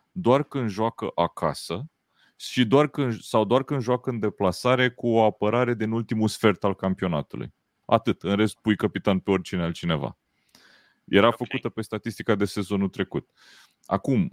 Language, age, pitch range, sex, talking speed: Romanian, 30-49, 90-120 Hz, male, 155 wpm